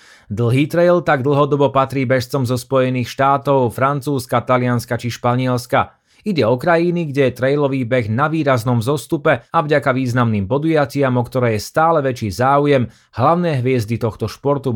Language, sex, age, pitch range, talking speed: Slovak, male, 30-49, 120-145 Hz, 150 wpm